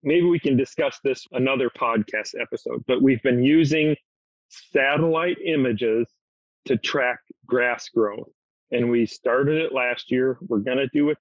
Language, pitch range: English, 120-140 Hz